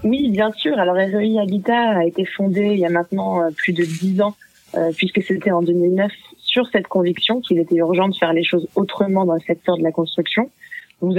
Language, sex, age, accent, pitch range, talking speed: French, female, 20-39, French, 170-210 Hz, 215 wpm